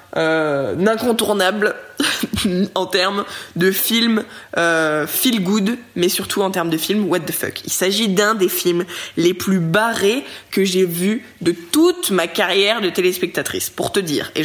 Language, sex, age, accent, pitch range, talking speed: French, female, 20-39, French, 185-250 Hz, 160 wpm